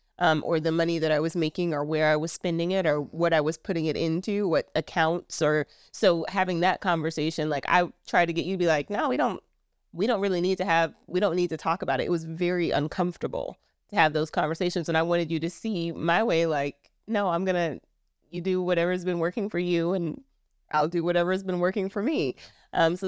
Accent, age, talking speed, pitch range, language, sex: American, 20-39, 240 wpm, 160-190 Hz, English, female